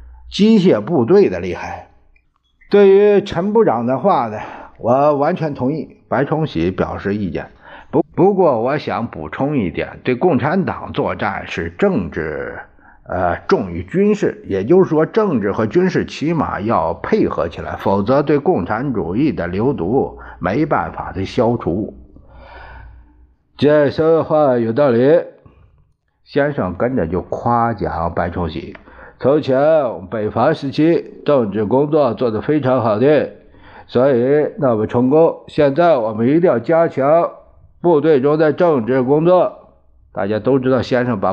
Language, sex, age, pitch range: Chinese, male, 50-69, 100-155 Hz